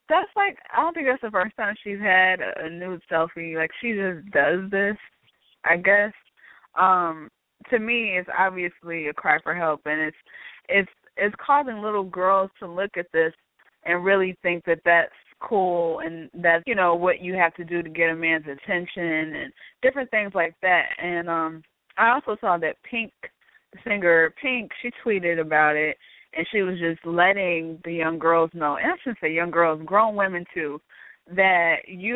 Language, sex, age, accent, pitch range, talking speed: English, female, 20-39, American, 165-200 Hz, 185 wpm